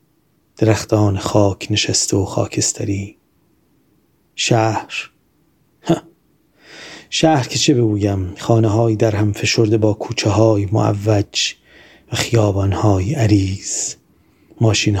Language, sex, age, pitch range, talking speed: Persian, male, 30-49, 105-120 Hz, 95 wpm